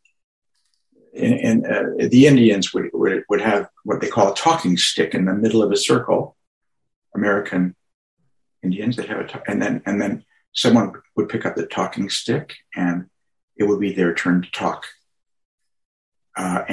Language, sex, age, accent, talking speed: English, male, 60-79, American, 170 wpm